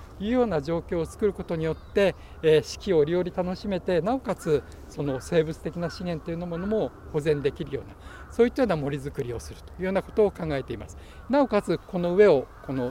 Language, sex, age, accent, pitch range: Japanese, male, 60-79, native, 135-175 Hz